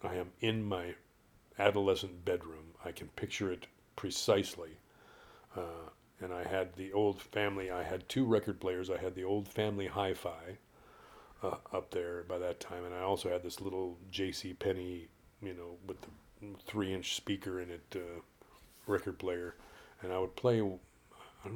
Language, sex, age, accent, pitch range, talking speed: English, male, 40-59, American, 85-95 Hz, 170 wpm